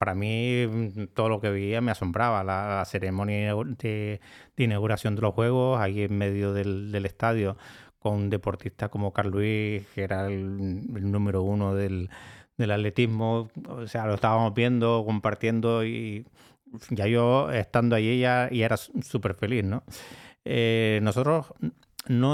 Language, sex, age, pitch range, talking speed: Spanish, male, 30-49, 100-120 Hz, 155 wpm